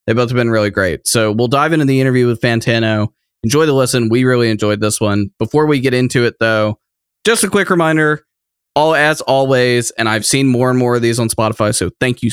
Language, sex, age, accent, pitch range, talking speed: English, male, 20-39, American, 105-130 Hz, 235 wpm